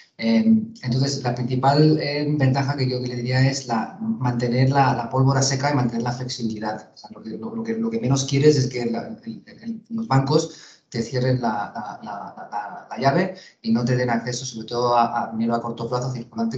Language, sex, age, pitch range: Spanish, male, 30-49, 115-145 Hz